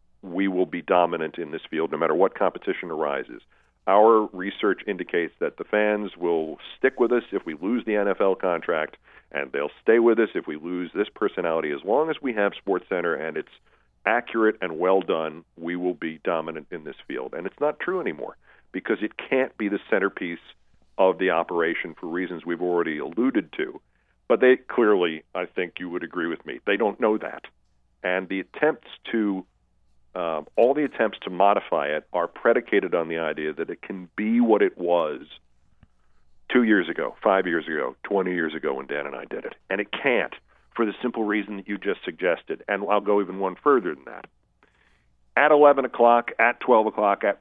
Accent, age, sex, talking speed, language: American, 50-69, male, 195 wpm, English